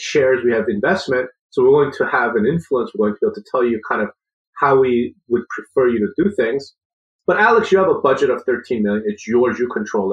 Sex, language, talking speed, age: male, English, 250 wpm, 30-49